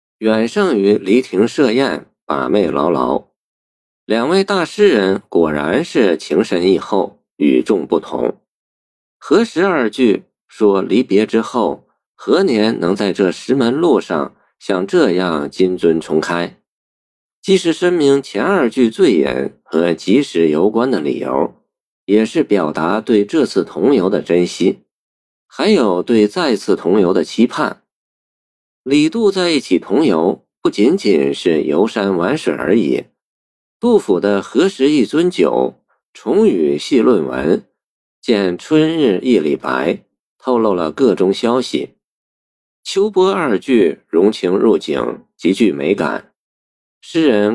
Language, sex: Chinese, male